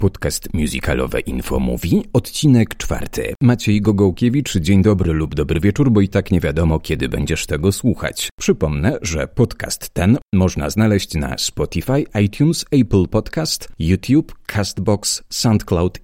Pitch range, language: 90-115 Hz, Polish